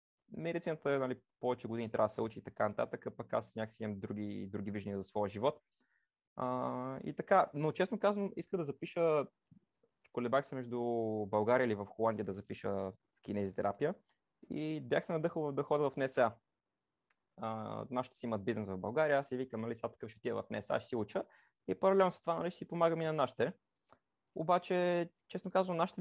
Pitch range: 105-150 Hz